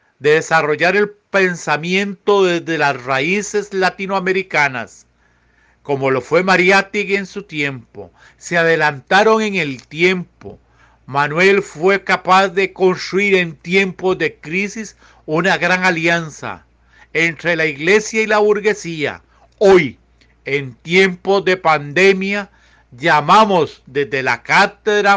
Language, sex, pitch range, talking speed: Spanish, male, 155-200 Hz, 110 wpm